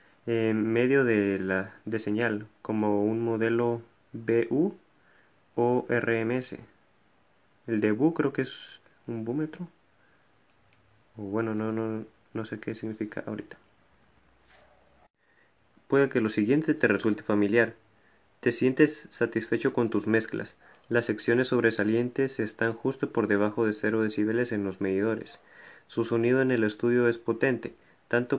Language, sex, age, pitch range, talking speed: Spanish, male, 30-49, 110-125 Hz, 130 wpm